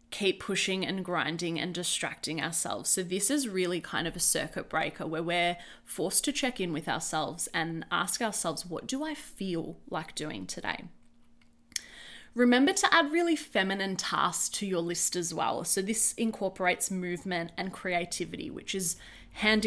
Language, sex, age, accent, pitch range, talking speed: English, female, 20-39, Australian, 170-215 Hz, 165 wpm